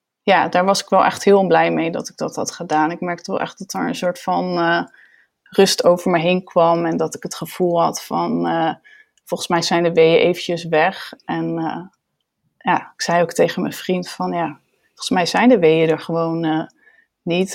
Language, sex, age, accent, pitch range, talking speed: Dutch, female, 20-39, Dutch, 170-190 Hz, 220 wpm